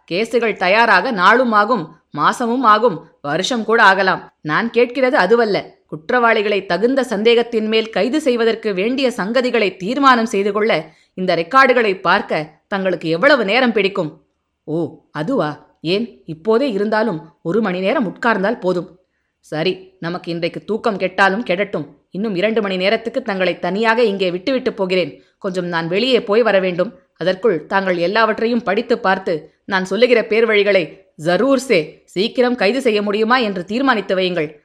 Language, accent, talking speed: Tamil, native, 135 wpm